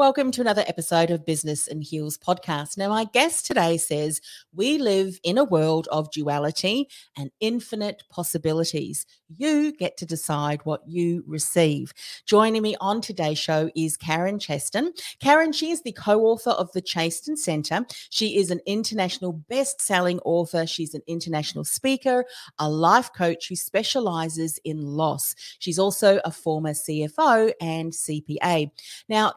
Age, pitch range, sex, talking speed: 40-59, 160-210 Hz, female, 150 wpm